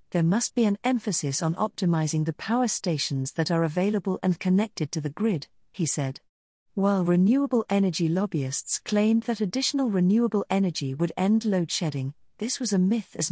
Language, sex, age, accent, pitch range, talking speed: English, female, 40-59, British, 160-215 Hz, 170 wpm